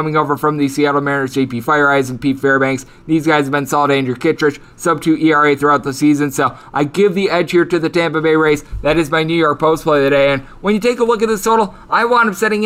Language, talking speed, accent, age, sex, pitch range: English, 270 wpm, American, 20-39, male, 145-190 Hz